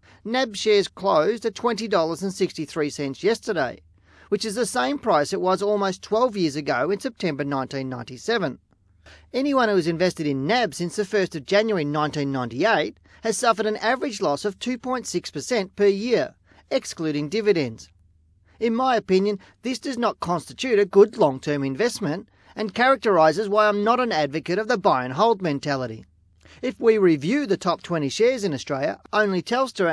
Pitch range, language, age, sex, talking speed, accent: 155-225 Hz, English, 40-59, male, 155 wpm, Australian